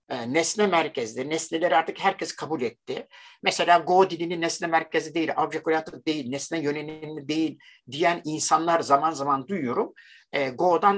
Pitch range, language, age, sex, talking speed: 140-205 Hz, Turkish, 60-79, male, 130 wpm